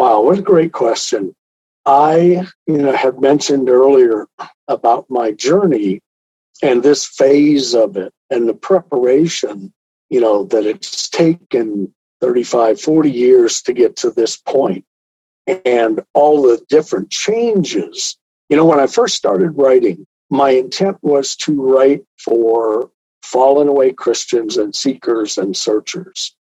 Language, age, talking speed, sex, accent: English, 50-69, 135 wpm, male, American